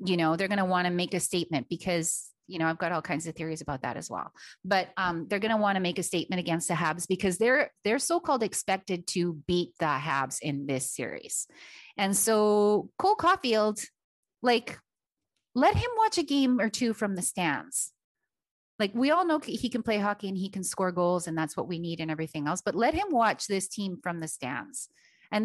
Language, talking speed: English, 220 wpm